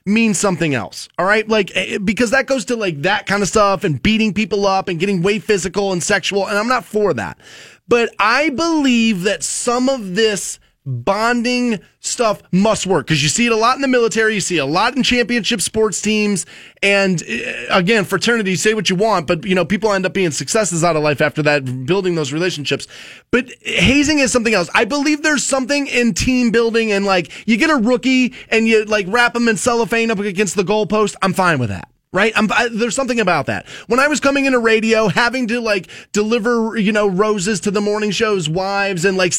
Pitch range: 185-235 Hz